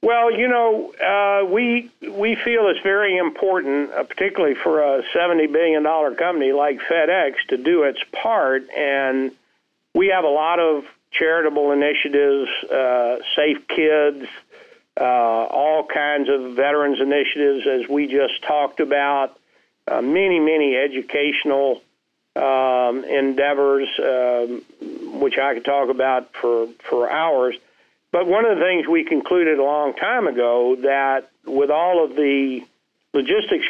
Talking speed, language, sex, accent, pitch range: 135 wpm, English, male, American, 130-170 Hz